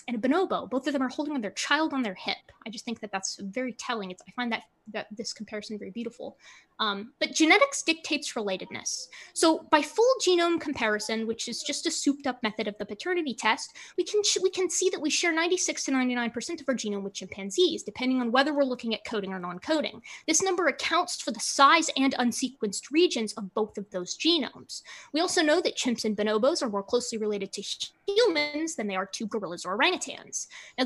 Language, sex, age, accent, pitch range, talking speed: English, female, 20-39, American, 215-320 Hz, 215 wpm